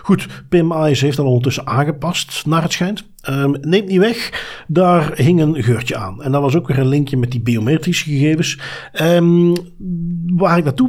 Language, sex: Dutch, male